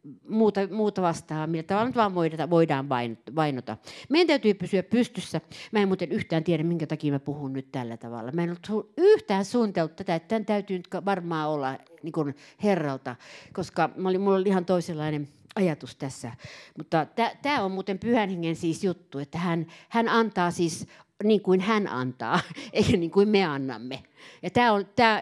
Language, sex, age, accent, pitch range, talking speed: Finnish, female, 50-69, native, 160-210 Hz, 175 wpm